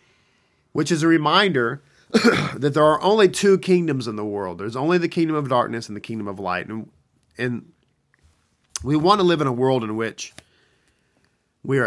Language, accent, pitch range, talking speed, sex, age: English, American, 110-145 Hz, 185 wpm, male, 40-59